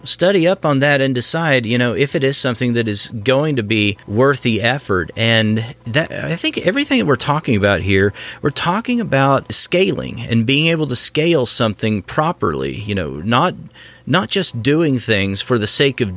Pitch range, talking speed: 105-135 Hz, 190 wpm